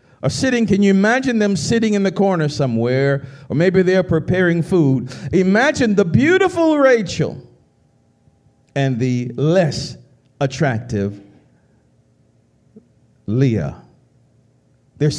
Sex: male